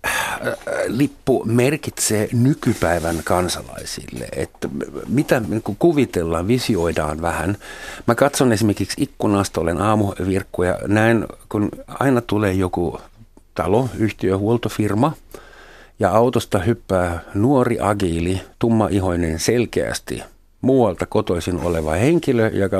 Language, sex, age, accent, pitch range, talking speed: Finnish, male, 50-69, native, 90-115 Hz, 95 wpm